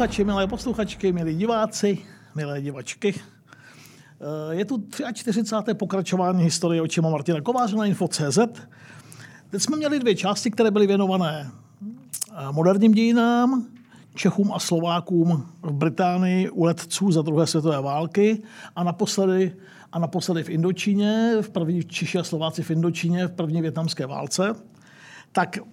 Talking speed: 130 wpm